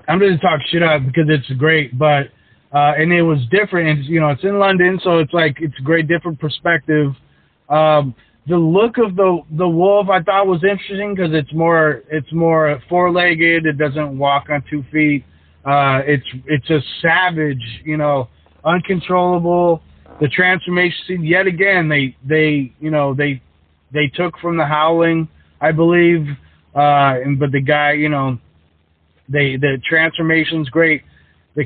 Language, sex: English, male